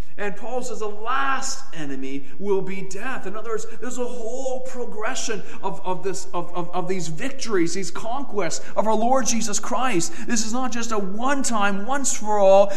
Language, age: English, 40-59